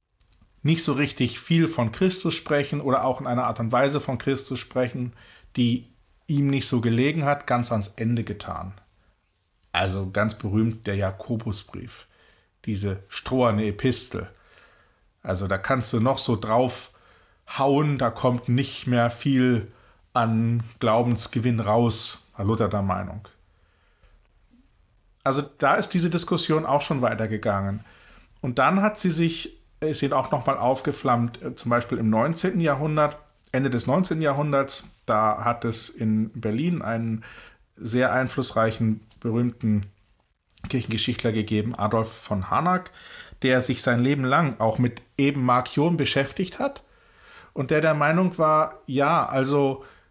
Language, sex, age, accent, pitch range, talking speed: German, male, 40-59, German, 110-145 Hz, 135 wpm